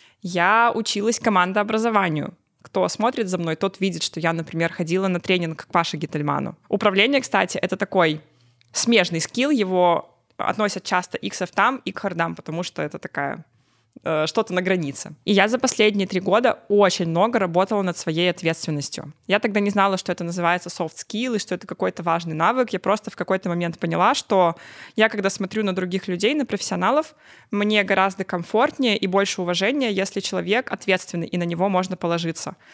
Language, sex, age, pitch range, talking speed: Russian, female, 20-39, 180-215 Hz, 175 wpm